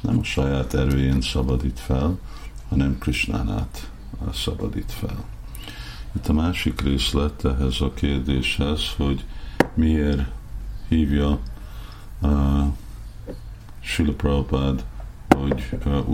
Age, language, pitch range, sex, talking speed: 50-69, Hungarian, 65-80 Hz, male, 90 wpm